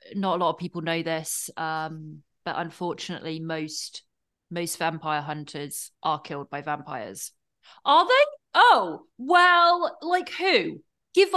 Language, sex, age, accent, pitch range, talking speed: English, female, 30-49, British, 185-255 Hz, 130 wpm